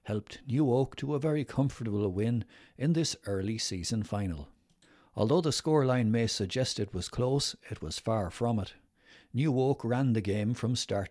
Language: English